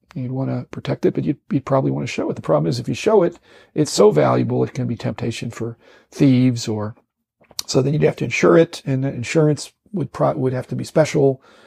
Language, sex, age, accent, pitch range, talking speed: English, male, 40-59, American, 120-160 Hz, 235 wpm